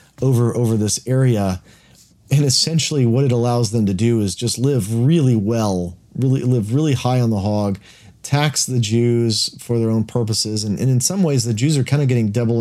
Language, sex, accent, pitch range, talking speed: English, male, American, 105-125 Hz, 205 wpm